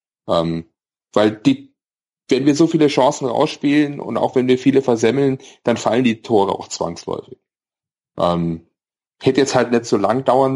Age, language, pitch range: 30-49, German, 110-135 Hz